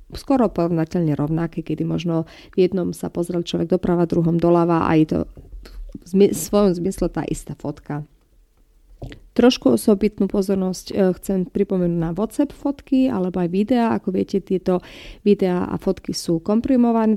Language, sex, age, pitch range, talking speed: Slovak, female, 30-49, 170-200 Hz, 150 wpm